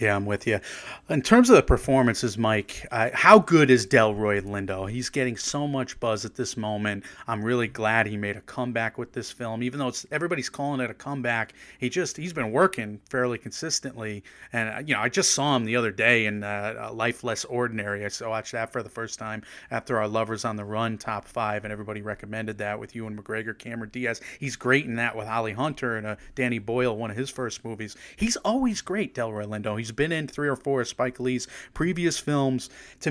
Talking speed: 220 wpm